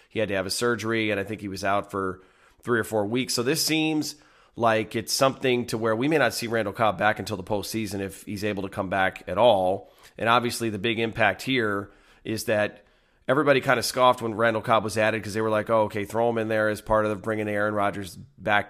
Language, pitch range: English, 100-115 Hz